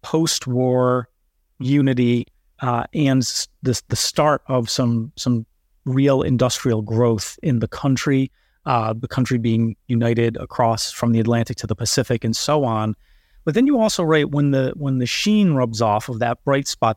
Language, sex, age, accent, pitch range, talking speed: English, male, 30-49, American, 115-140 Hz, 165 wpm